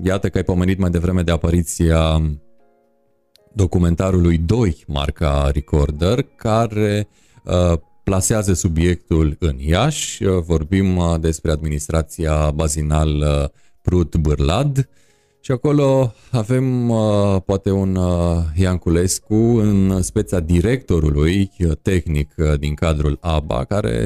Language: Romanian